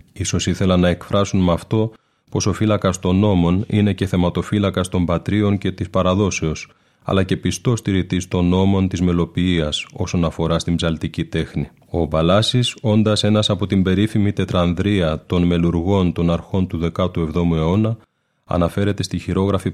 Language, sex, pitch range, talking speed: Greek, male, 85-100 Hz, 150 wpm